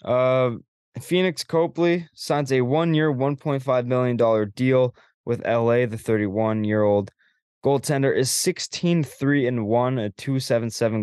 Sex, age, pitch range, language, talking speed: male, 20-39, 105-130 Hz, English, 130 wpm